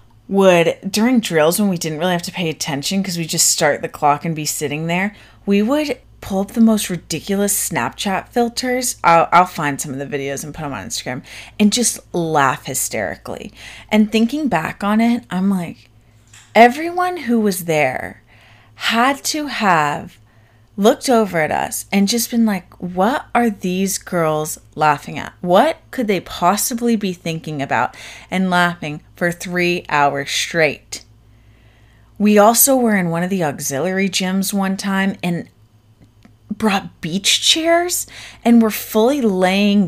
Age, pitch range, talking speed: 30-49, 145-210 Hz, 160 wpm